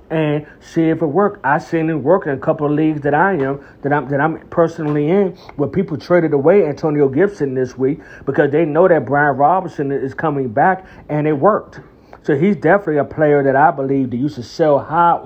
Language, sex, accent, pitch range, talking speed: English, male, American, 135-170 Hz, 215 wpm